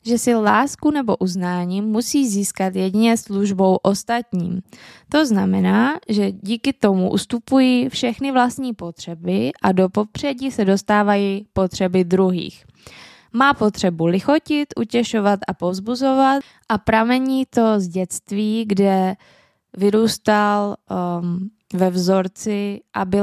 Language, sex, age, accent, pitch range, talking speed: Czech, female, 20-39, native, 190-235 Hz, 110 wpm